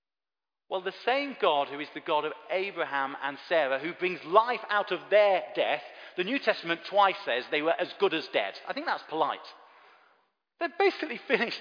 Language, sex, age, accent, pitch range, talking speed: English, male, 40-59, British, 175-245 Hz, 190 wpm